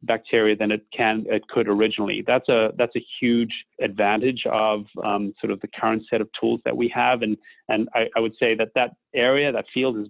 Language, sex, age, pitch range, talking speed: English, male, 30-49, 105-115 Hz, 220 wpm